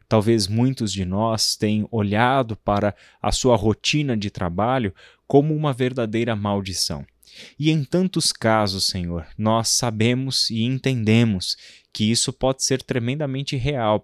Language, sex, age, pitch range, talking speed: Portuguese, male, 20-39, 105-135 Hz, 135 wpm